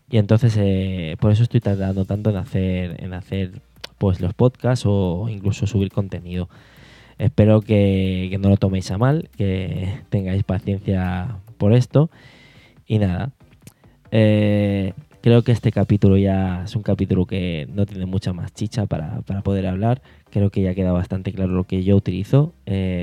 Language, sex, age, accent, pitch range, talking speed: Spanish, male, 20-39, Spanish, 95-115 Hz, 160 wpm